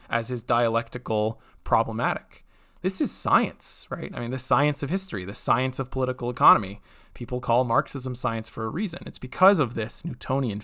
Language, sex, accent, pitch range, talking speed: English, male, American, 125-170 Hz, 175 wpm